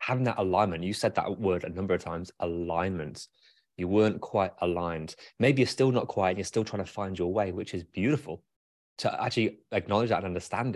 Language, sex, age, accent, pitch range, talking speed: English, male, 20-39, British, 90-125 Hz, 210 wpm